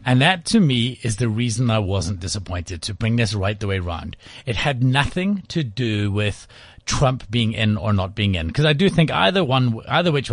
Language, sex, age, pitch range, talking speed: English, male, 30-49, 115-160 Hz, 220 wpm